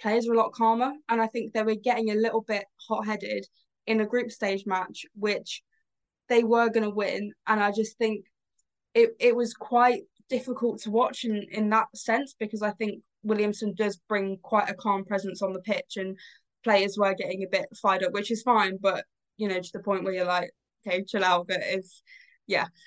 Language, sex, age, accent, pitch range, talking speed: English, female, 10-29, British, 190-220 Hz, 210 wpm